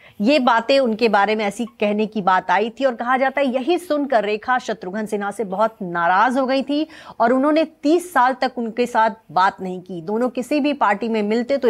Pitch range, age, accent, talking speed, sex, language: 215-270 Hz, 30-49, Indian, 220 wpm, female, English